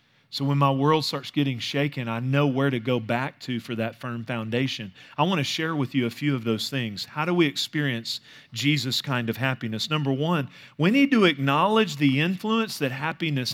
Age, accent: 40-59, American